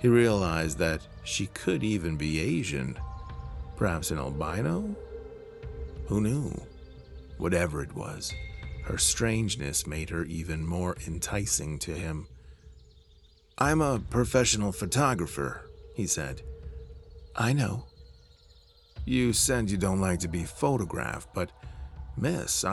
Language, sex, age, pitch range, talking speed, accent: English, male, 40-59, 75-105 Hz, 115 wpm, American